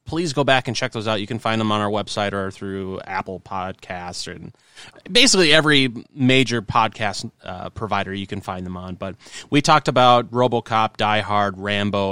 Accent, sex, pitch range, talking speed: American, male, 100-145 Hz, 190 wpm